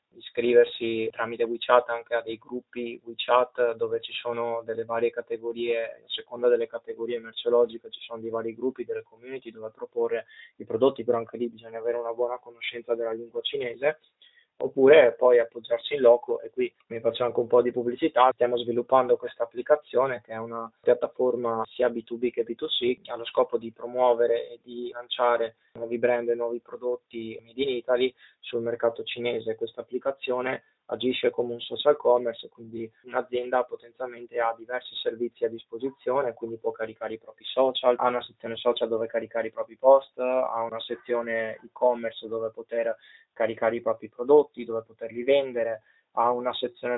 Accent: native